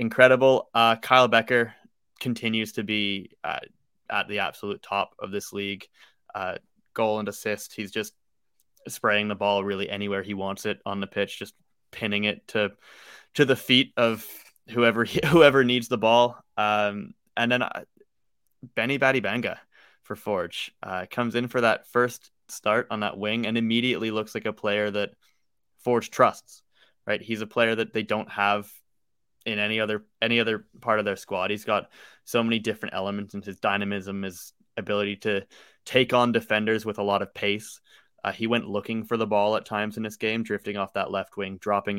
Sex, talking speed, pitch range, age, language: male, 185 wpm, 100-115 Hz, 20-39, English